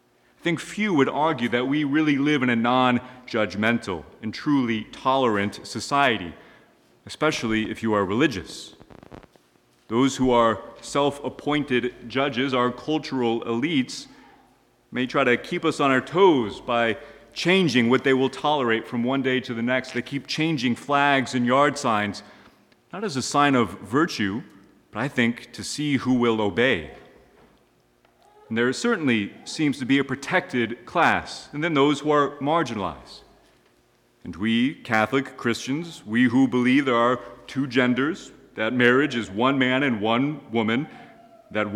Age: 30-49